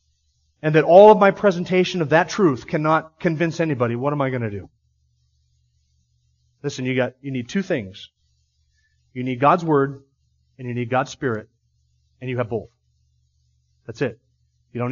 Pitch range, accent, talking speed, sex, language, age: 115-155 Hz, American, 170 wpm, male, English, 30-49